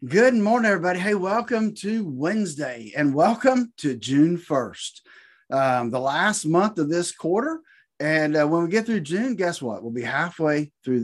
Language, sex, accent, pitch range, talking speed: English, male, American, 150-210 Hz, 175 wpm